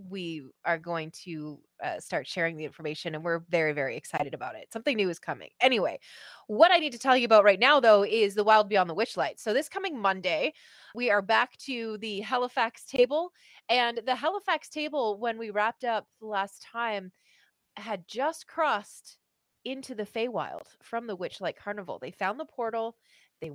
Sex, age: female, 20-39